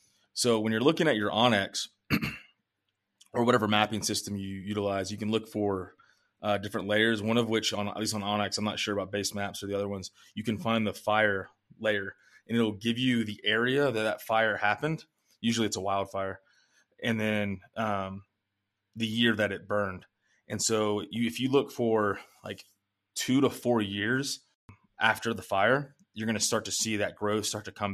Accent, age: American, 20-39